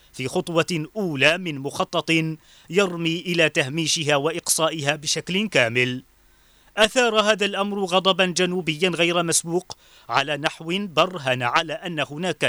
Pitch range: 150-185 Hz